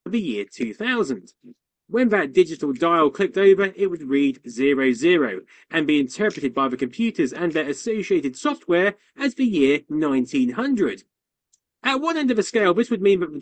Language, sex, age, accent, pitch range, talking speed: English, male, 30-49, British, 140-230 Hz, 175 wpm